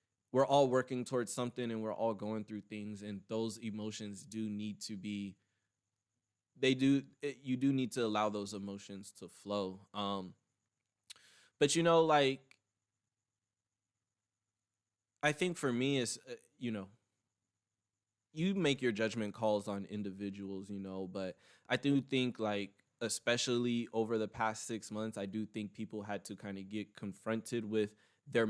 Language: English